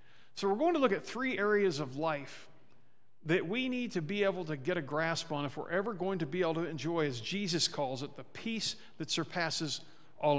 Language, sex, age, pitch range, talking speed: English, male, 50-69, 150-215 Hz, 225 wpm